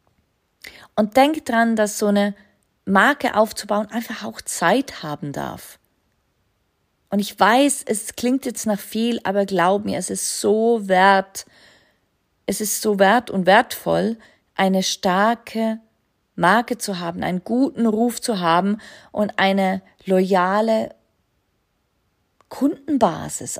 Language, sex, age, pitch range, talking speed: German, female, 40-59, 170-225 Hz, 120 wpm